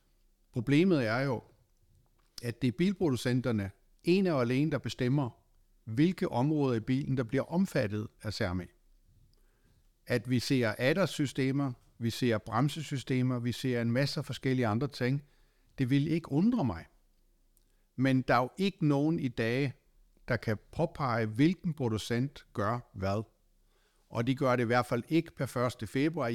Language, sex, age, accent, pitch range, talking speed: Danish, male, 60-79, native, 115-140 Hz, 150 wpm